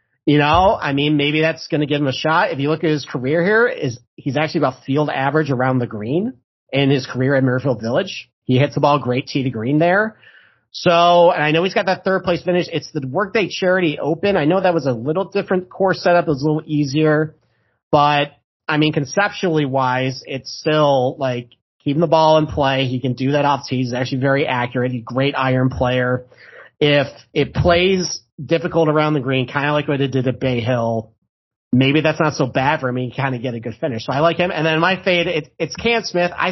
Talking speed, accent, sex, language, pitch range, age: 235 wpm, American, male, English, 130-160 Hz, 40-59